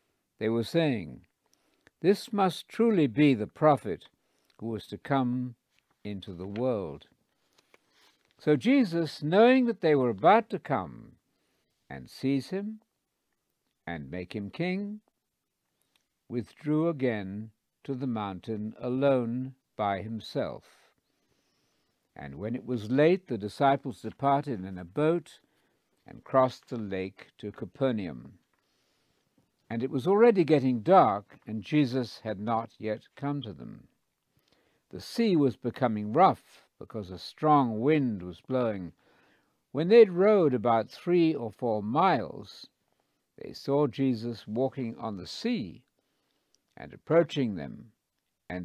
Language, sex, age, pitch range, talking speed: English, male, 60-79, 110-155 Hz, 125 wpm